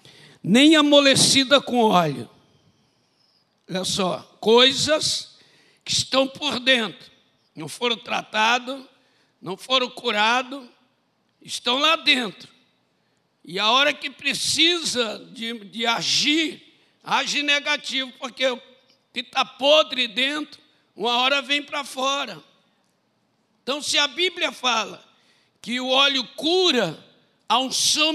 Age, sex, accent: 60-79, male, Brazilian